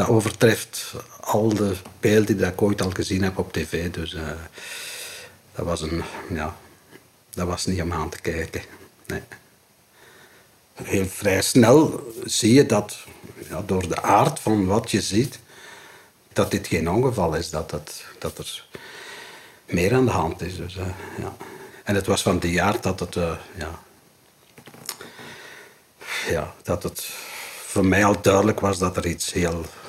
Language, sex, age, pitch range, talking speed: Dutch, male, 60-79, 85-105 Hz, 135 wpm